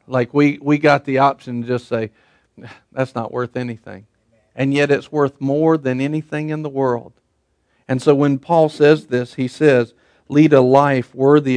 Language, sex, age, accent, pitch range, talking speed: English, male, 50-69, American, 125-160 Hz, 180 wpm